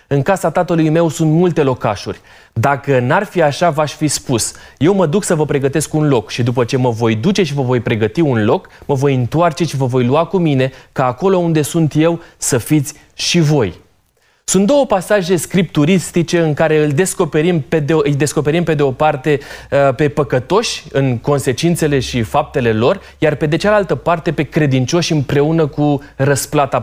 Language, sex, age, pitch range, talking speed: Romanian, male, 20-39, 130-170 Hz, 190 wpm